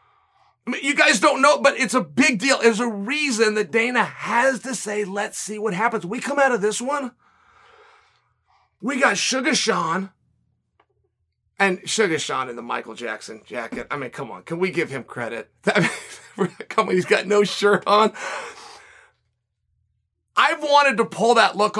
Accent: American